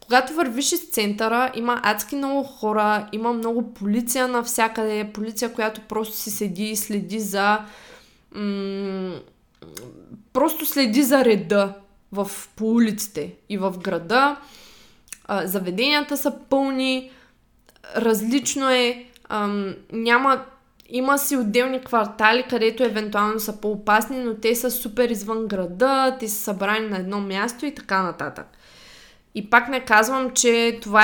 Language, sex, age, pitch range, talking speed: Bulgarian, female, 20-39, 205-250 Hz, 130 wpm